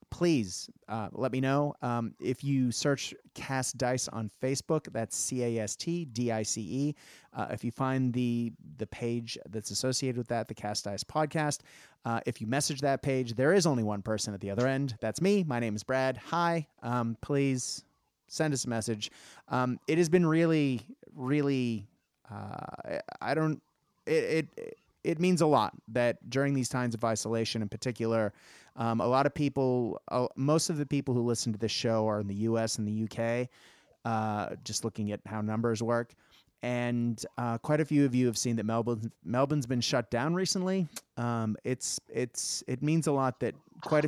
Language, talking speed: English, 185 wpm